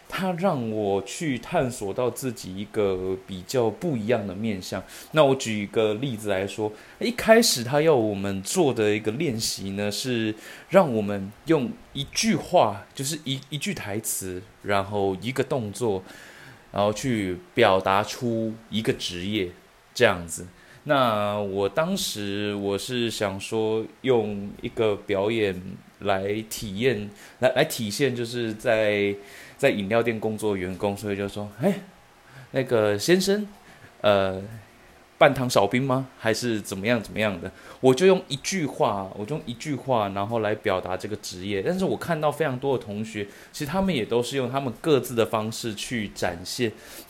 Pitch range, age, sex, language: 100-130 Hz, 20-39, male, Chinese